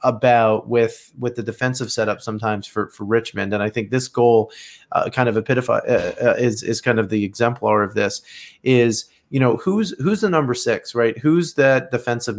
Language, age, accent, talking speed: English, 30-49, American, 200 wpm